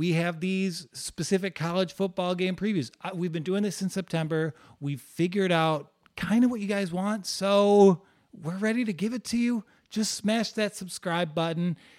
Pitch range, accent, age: 150-190 Hz, American, 30-49